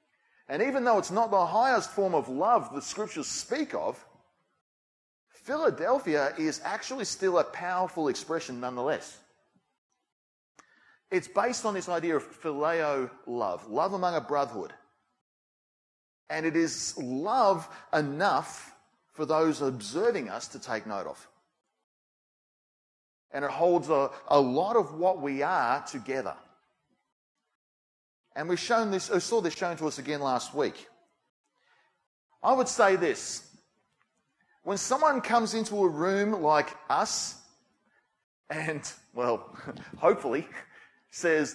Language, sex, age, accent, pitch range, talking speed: English, male, 30-49, Australian, 145-205 Hz, 120 wpm